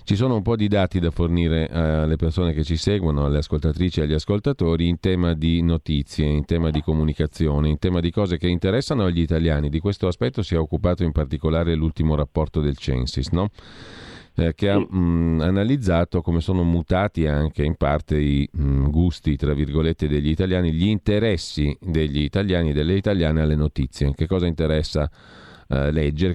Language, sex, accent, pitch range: Italian, male, native, 75-90 Hz